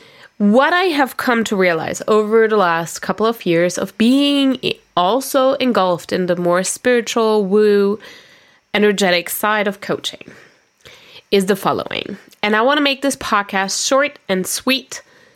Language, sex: English, female